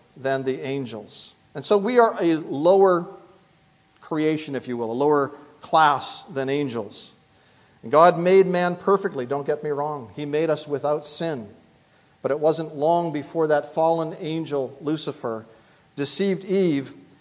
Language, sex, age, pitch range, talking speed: English, male, 40-59, 145-185 Hz, 150 wpm